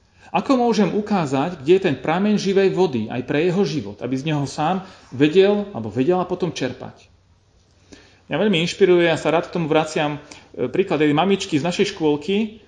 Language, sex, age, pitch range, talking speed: Slovak, male, 40-59, 120-180 Hz, 175 wpm